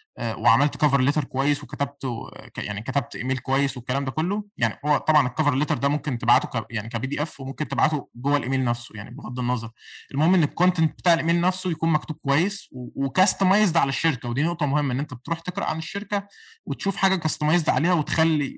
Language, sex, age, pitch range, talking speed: Arabic, male, 20-39, 125-165 Hz, 185 wpm